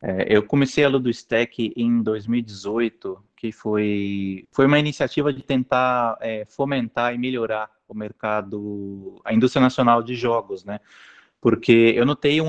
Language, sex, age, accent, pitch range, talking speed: Portuguese, male, 20-39, Brazilian, 110-135 Hz, 140 wpm